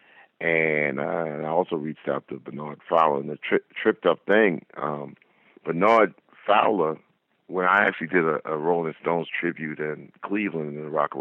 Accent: American